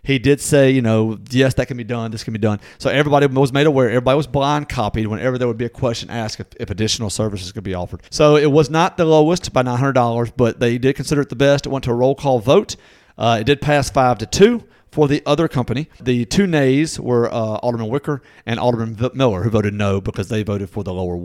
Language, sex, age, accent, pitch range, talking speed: English, male, 40-59, American, 115-145 Hz, 250 wpm